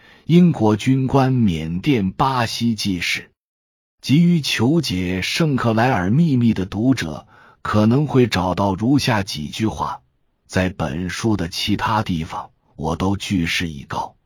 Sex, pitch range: male, 90-125 Hz